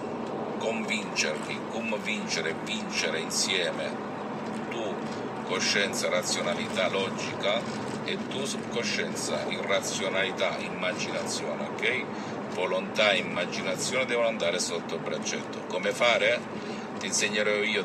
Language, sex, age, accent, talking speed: Italian, male, 50-69, native, 95 wpm